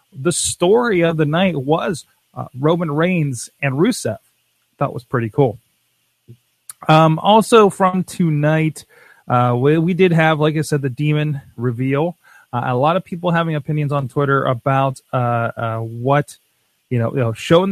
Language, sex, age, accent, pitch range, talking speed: English, male, 30-49, American, 120-155 Hz, 165 wpm